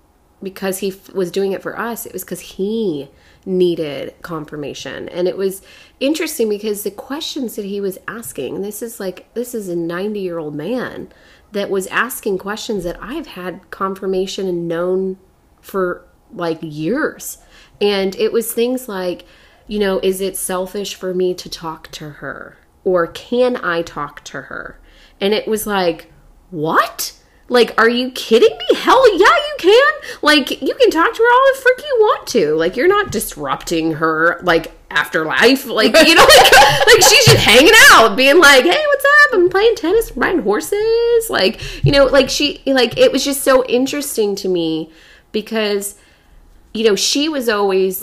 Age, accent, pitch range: 30-49, American, 180-255 Hz